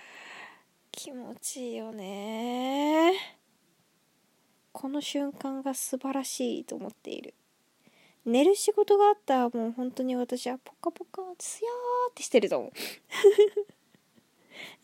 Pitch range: 220-310 Hz